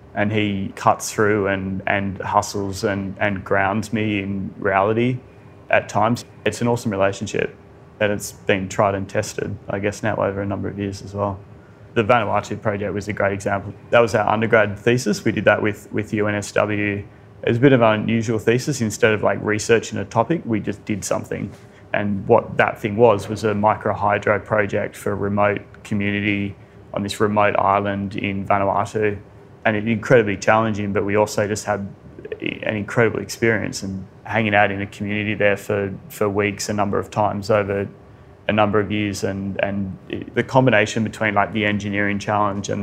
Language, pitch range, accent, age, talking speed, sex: English, 100-110 Hz, Australian, 20-39, 185 wpm, male